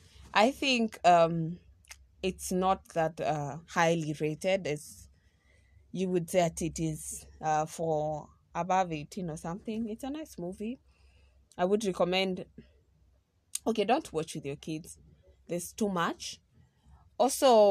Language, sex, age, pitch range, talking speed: English, female, 20-39, 165-220 Hz, 130 wpm